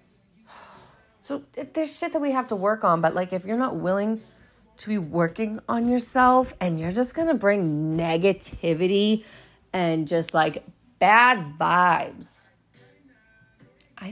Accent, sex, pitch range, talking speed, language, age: American, female, 180-250 Hz, 140 wpm, English, 30-49